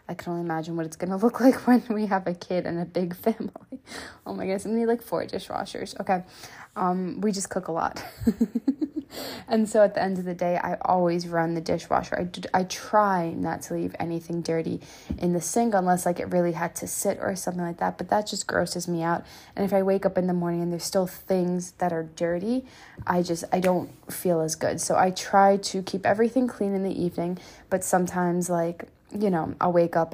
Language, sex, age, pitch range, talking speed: English, female, 20-39, 170-195 Hz, 230 wpm